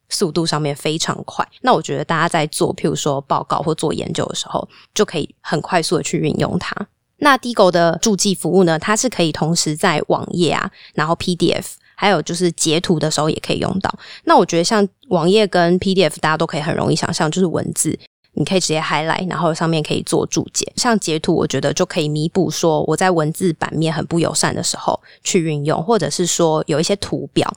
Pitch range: 155-185 Hz